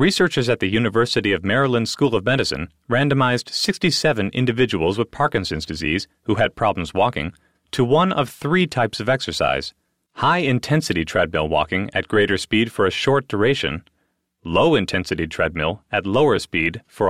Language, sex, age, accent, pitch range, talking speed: English, male, 30-49, American, 105-145 Hz, 145 wpm